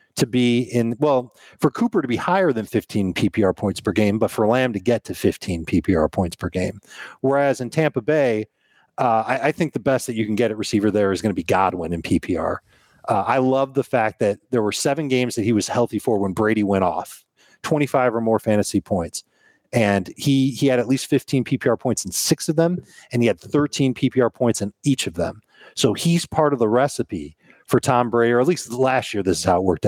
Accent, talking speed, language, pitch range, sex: American, 235 wpm, English, 105-130 Hz, male